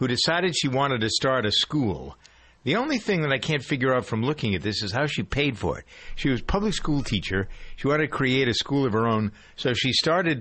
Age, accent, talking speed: 50-69, American, 255 wpm